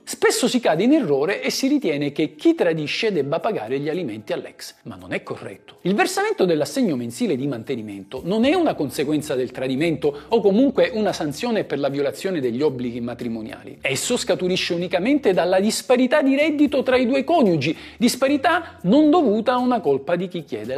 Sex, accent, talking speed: male, native, 180 wpm